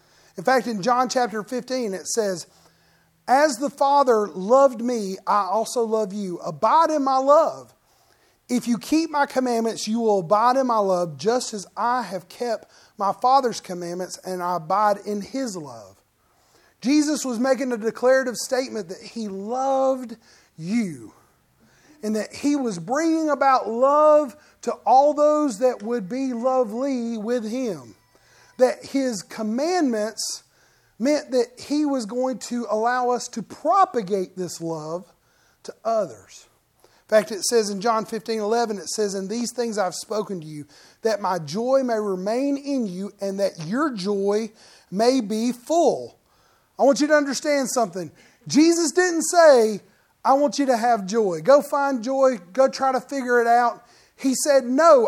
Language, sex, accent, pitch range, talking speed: English, male, American, 210-270 Hz, 160 wpm